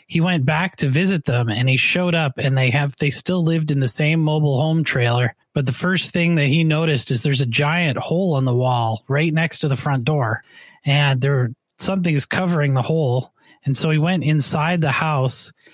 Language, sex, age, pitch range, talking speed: English, male, 30-49, 135-160 Hz, 215 wpm